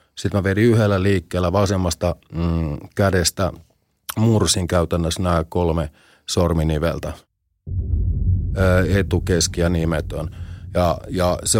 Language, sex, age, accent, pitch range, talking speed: Finnish, male, 30-49, native, 85-100 Hz, 95 wpm